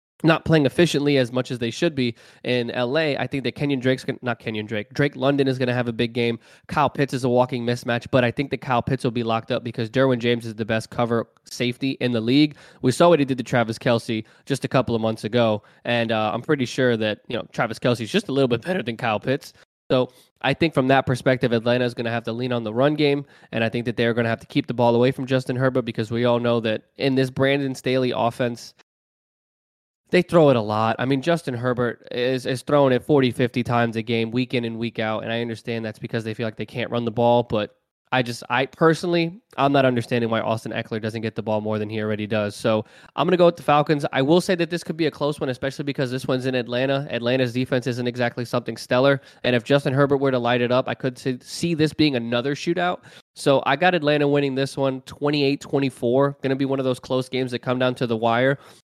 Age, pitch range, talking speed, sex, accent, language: 20-39, 120-140 Hz, 260 wpm, male, American, English